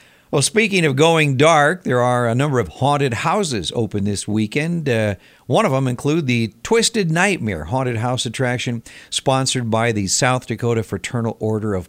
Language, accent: Japanese, American